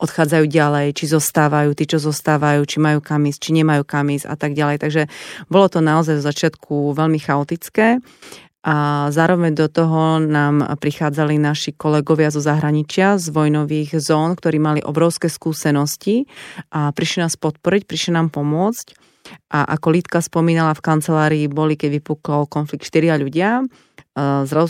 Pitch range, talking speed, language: 150-165 Hz, 150 wpm, Slovak